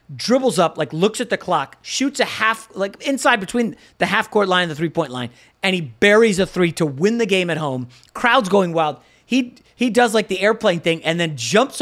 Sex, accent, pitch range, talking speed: male, American, 155-220 Hz, 225 wpm